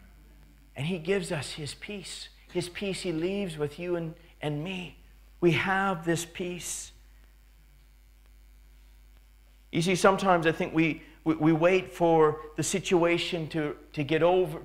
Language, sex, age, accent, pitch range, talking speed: English, male, 40-59, American, 160-190 Hz, 145 wpm